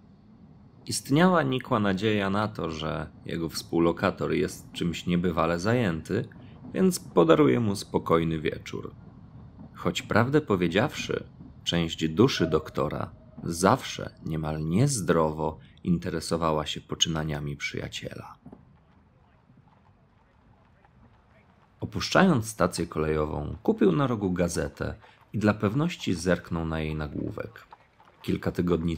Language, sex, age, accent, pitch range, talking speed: Polish, male, 40-59, native, 80-105 Hz, 95 wpm